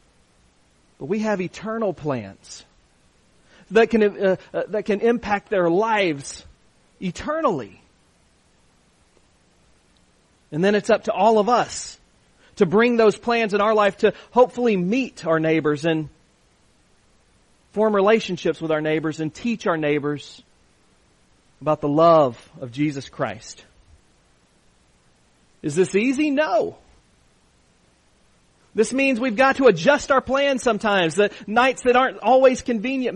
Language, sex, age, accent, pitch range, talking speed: English, male, 40-59, American, 160-225 Hz, 125 wpm